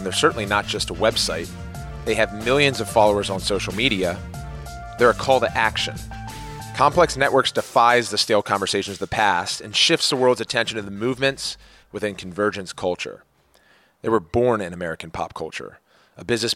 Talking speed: 180 wpm